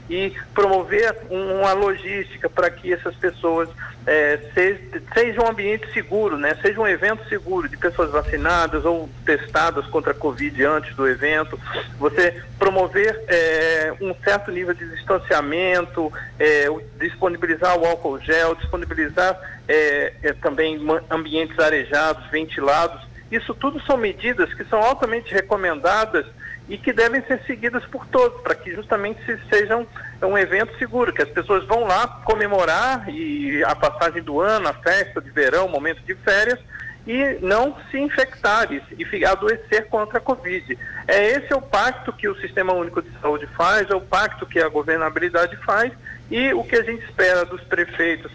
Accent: Brazilian